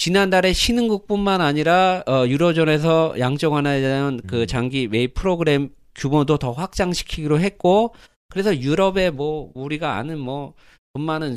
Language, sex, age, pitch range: Korean, male, 40-59, 125-180 Hz